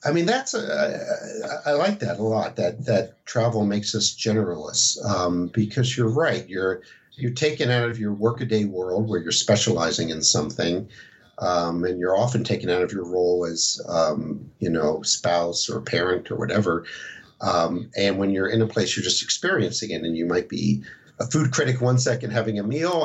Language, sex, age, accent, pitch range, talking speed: English, male, 50-69, American, 100-125 Hz, 195 wpm